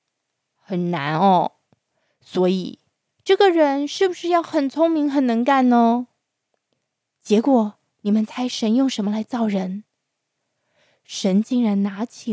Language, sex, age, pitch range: Chinese, female, 20-39, 205-300 Hz